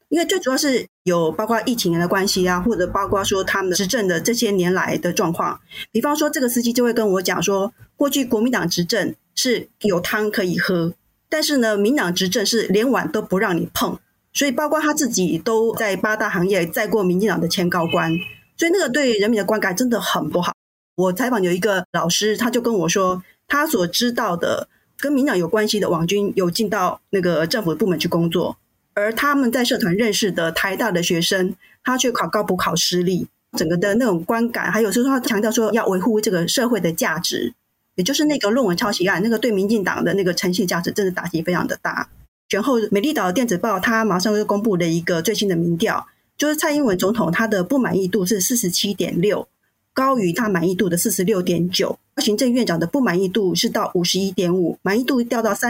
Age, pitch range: 30-49, 180-235 Hz